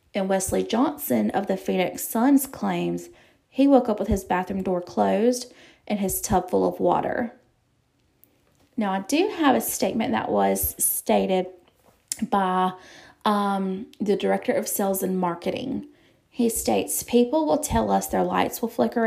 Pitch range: 175-220 Hz